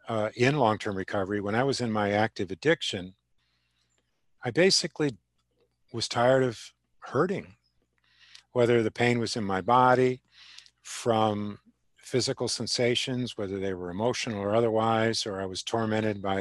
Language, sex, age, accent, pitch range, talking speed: English, male, 50-69, American, 100-125 Hz, 140 wpm